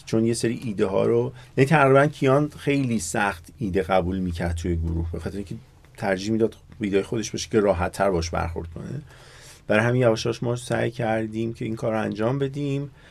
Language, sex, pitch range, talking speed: Persian, male, 105-130 Hz, 190 wpm